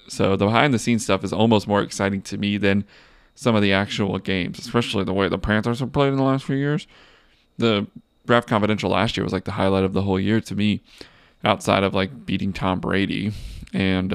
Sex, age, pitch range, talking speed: male, 20-39, 95-120 Hz, 215 wpm